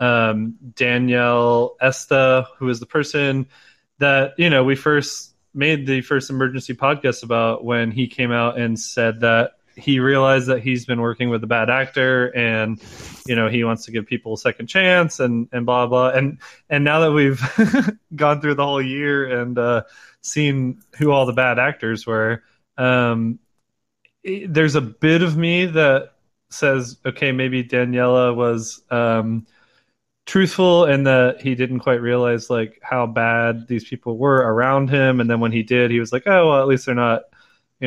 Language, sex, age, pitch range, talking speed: English, male, 20-39, 120-140 Hz, 175 wpm